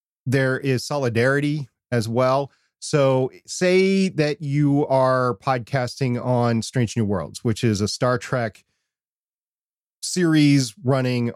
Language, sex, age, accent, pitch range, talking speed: English, male, 40-59, American, 110-135 Hz, 115 wpm